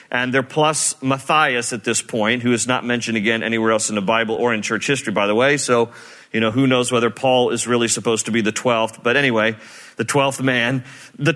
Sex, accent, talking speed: male, American, 230 wpm